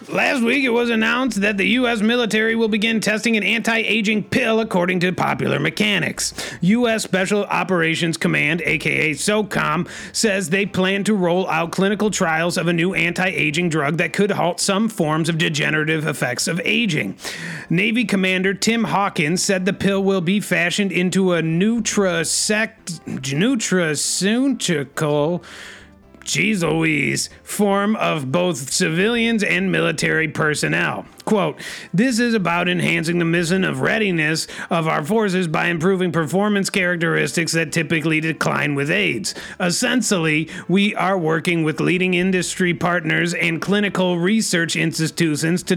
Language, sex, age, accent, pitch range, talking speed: English, male, 30-49, American, 165-205 Hz, 135 wpm